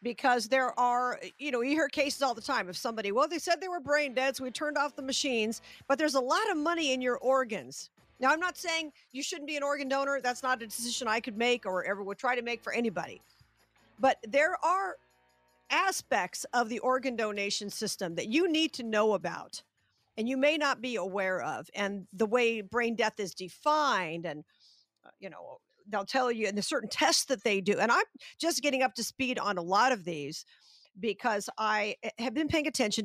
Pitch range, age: 200-265 Hz, 50-69